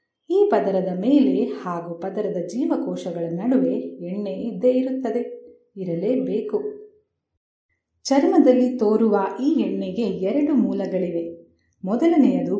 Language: Kannada